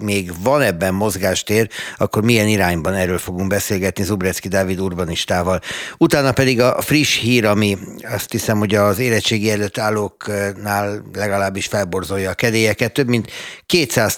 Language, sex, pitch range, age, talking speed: Hungarian, male, 95-115 Hz, 60-79, 135 wpm